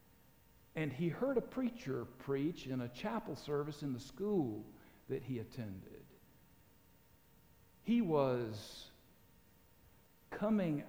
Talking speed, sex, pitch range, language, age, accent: 105 wpm, male, 120-155 Hz, English, 60-79, American